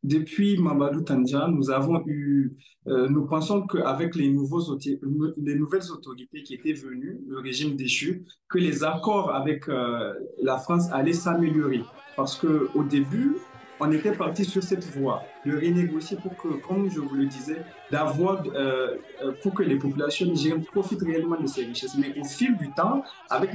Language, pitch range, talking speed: French, 140-190 Hz, 170 wpm